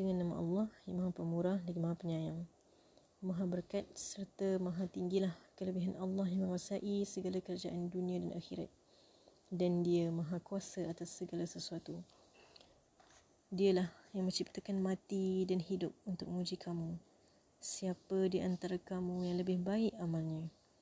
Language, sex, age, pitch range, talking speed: Malay, female, 20-39, 175-190 Hz, 135 wpm